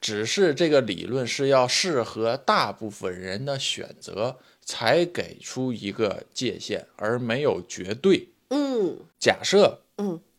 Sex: male